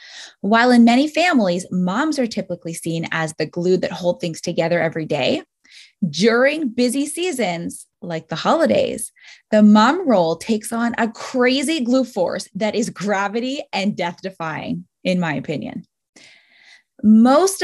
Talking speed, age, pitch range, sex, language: 140 wpm, 20-39, 180-260 Hz, female, English